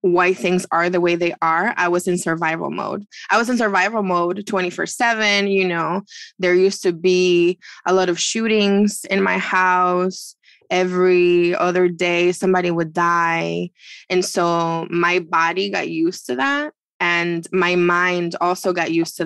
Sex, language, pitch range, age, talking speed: female, English, 175-210 Hz, 20-39, 160 wpm